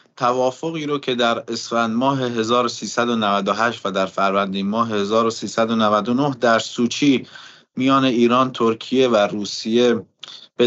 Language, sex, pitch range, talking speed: Persian, male, 115-130 Hz, 110 wpm